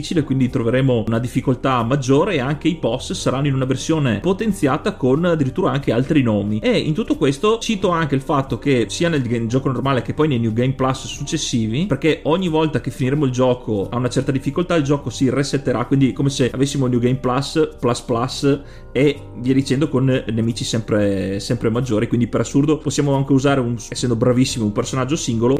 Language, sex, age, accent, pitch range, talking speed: Italian, male, 30-49, native, 120-155 Hz, 190 wpm